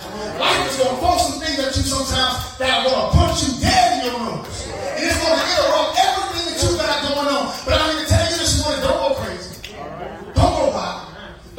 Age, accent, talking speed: 30-49, American, 235 wpm